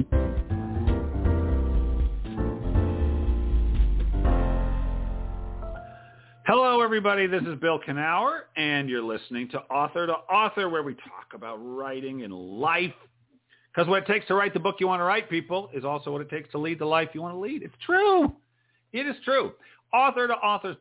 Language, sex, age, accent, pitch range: English, male, 50-69, American, 100-165 Hz